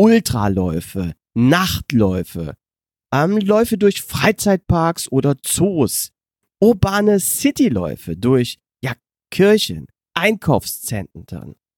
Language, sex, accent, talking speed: German, male, German, 70 wpm